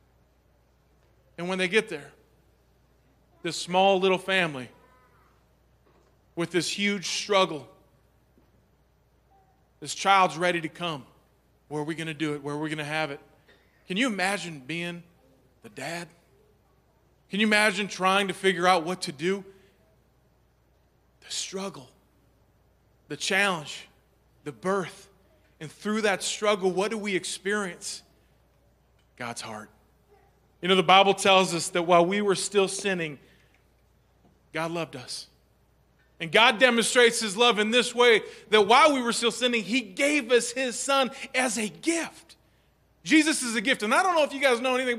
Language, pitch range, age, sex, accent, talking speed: English, 170-245 Hz, 30-49, male, American, 150 wpm